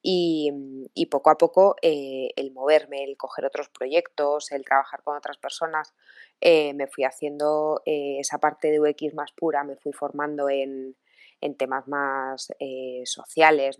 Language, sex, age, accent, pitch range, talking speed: Spanish, female, 20-39, Spanish, 140-170 Hz, 160 wpm